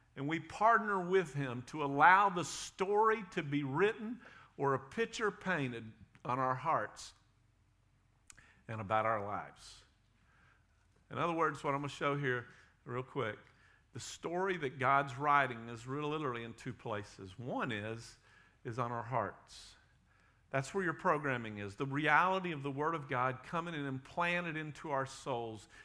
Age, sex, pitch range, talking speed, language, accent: 50-69, male, 110-145 Hz, 165 wpm, English, American